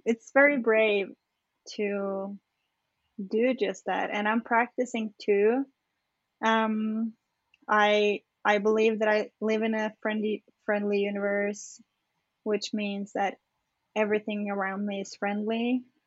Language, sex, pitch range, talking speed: English, female, 205-235 Hz, 115 wpm